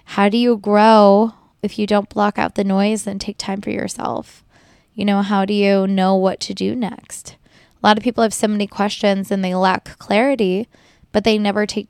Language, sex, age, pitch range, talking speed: English, female, 10-29, 190-215 Hz, 210 wpm